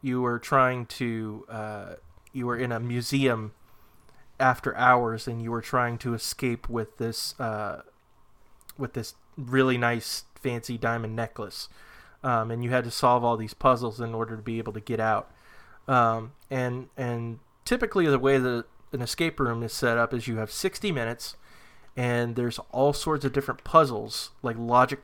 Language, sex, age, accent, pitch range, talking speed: English, male, 20-39, American, 115-130 Hz, 170 wpm